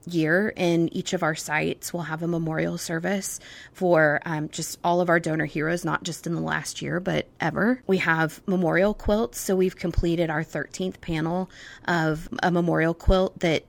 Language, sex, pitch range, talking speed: English, female, 155-175 Hz, 185 wpm